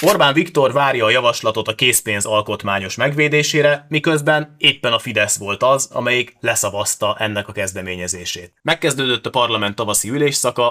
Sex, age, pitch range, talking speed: male, 30-49, 105-130 Hz, 140 wpm